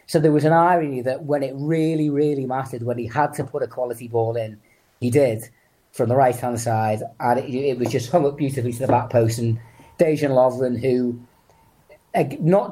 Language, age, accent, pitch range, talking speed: English, 30-49, British, 120-145 Hz, 205 wpm